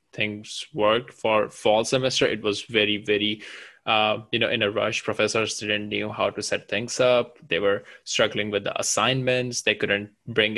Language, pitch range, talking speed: English, 105-125 Hz, 180 wpm